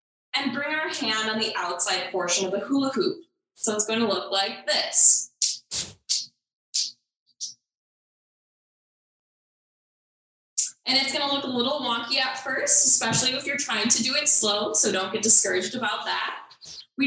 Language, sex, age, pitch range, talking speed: English, female, 10-29, 215-285 Hz, 150 wpm